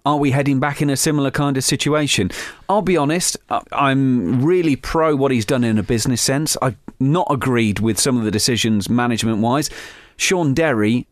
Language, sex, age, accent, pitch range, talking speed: English, male, 40-59, British, 110-140 Hz, 185 wpm